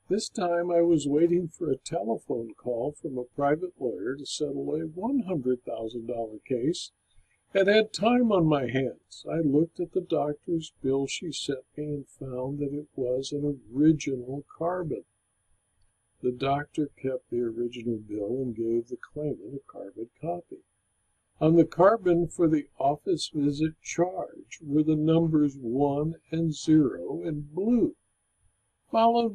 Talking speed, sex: 145 wpm, male